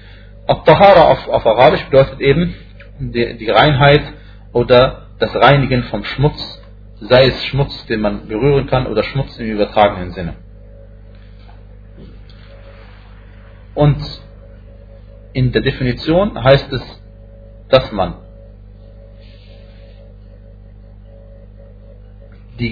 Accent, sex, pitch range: German, male, 95-120 Hz